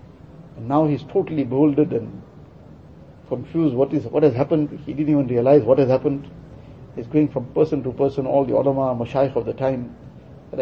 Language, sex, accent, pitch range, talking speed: English, male, Indian, 135-155 Hz, 180 wpm